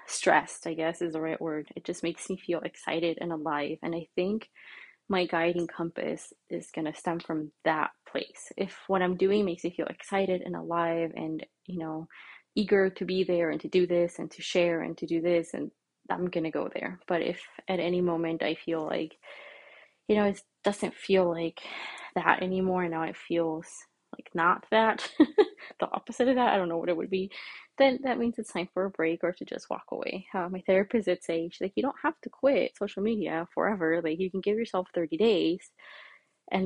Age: 20-39